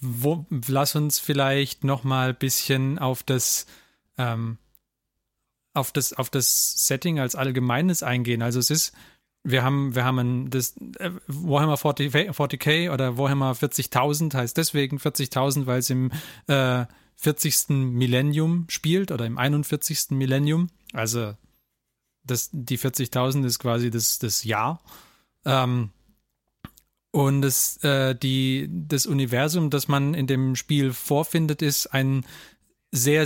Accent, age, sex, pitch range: German, 30-49, male, 125-150 Hz